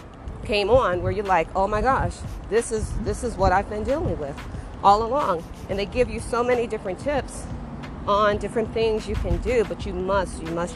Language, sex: English, female